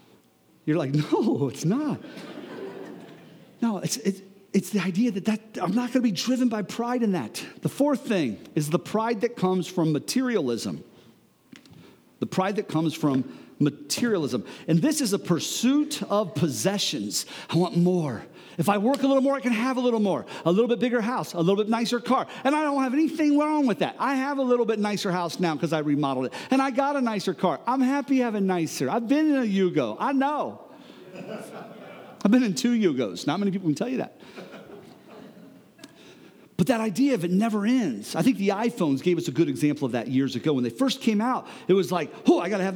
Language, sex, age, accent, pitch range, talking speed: English, male, 50-69, American, 175-250 Hz, 215 wpm